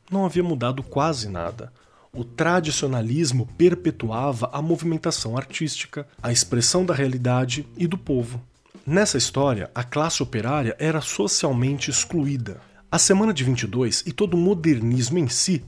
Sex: male